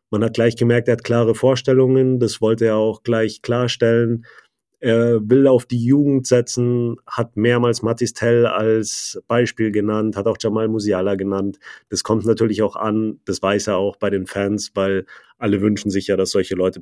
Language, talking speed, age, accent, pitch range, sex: German, 185 wpm, 30-49, German, 100-115 Hz, male